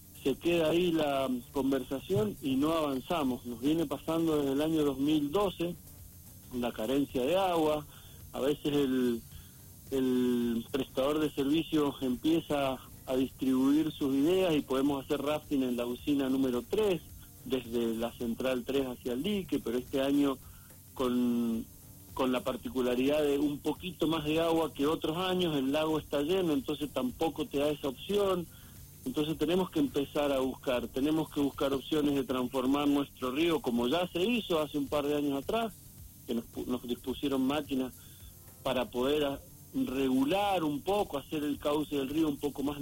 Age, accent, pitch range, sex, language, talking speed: 50-69, Argentinian, 125-155 Hz, male, Spanish, 165 wpm